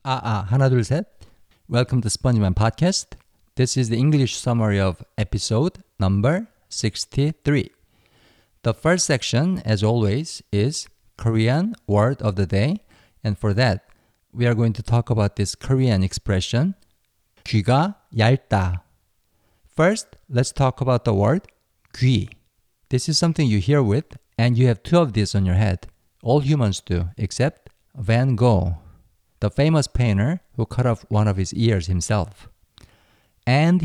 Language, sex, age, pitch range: Korean, male, 50-69, 105-135 Hz